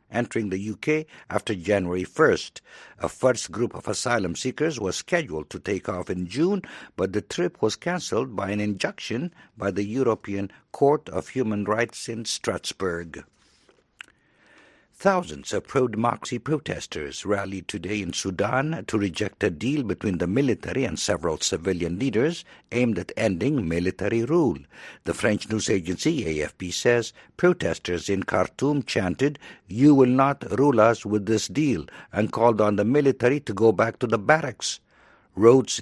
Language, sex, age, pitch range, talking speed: English, male, 60-79, 95-135 Hz, 150 wpm